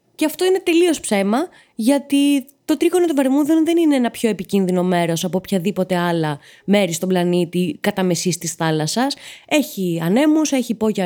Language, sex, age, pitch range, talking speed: Greek, female, 20-39, 175-255 Hz, 165 wpm